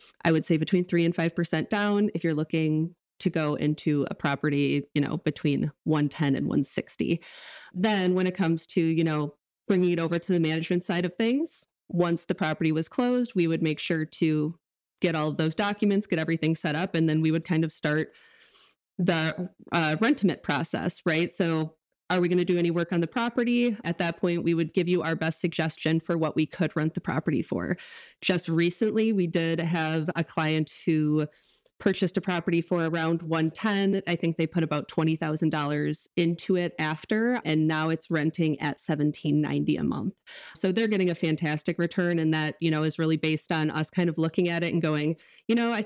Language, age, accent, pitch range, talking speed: English, 20-39, American, 160-185 Hz, 205 wpm